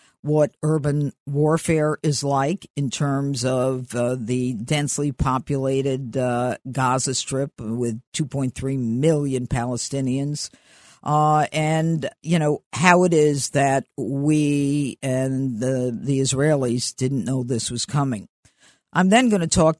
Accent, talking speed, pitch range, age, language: American, 125 wpm, 130-155 Hz, 50-69, English